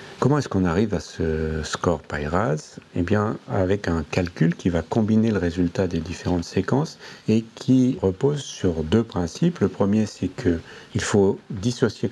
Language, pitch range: French, 85-110 Hz